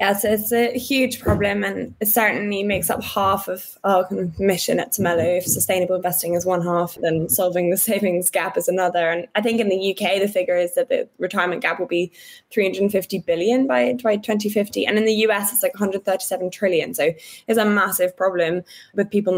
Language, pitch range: English, 170-215 Hz